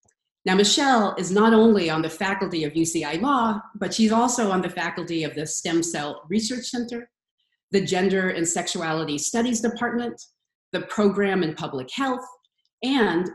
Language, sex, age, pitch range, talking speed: English, female, 40-59, 175-230 Hz, 155 wpm